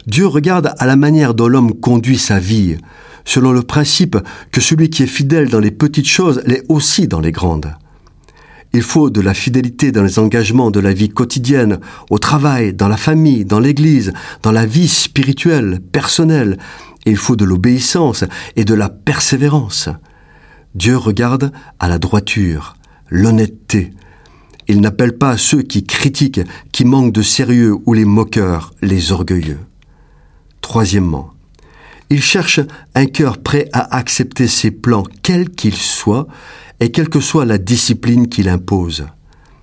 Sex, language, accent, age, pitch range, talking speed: male, French, French, 50-69, 100-140 Hz, 155 wpm